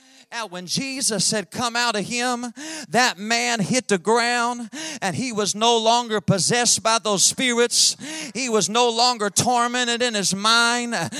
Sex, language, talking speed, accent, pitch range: male, English, 160 wpm, American, 215-255 Hz